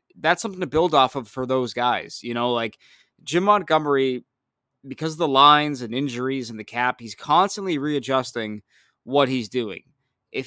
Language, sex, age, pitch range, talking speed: English, male, 20-39, 120-155 Hz, 170 wpm